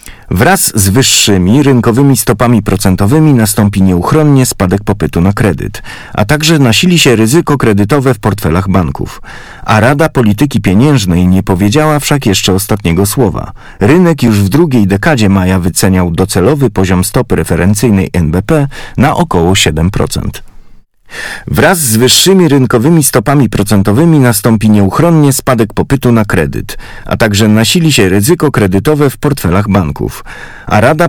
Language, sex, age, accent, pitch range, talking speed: Polish, male, 40-59, native, 95-135 Hz, 135 wpm